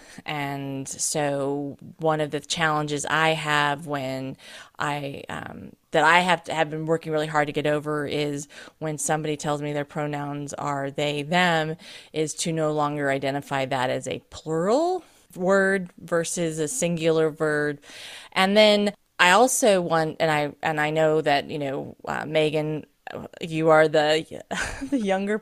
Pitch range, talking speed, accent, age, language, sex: 150-185 Hz, 160 wpm, American, 30-49, English, female